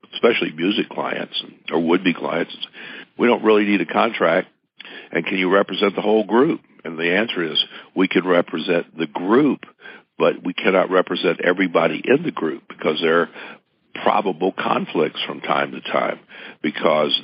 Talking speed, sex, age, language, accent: 160 wpm, male, 60-79, English, American